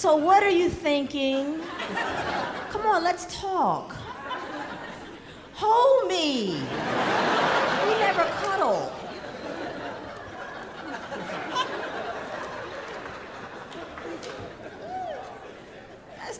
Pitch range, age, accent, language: 285-400 Hz, 40-59, American, English